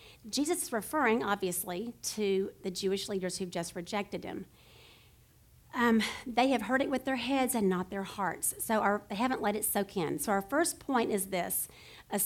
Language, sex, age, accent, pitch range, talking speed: English, female, 50-69, American, 200-285 Hz, 185 wpm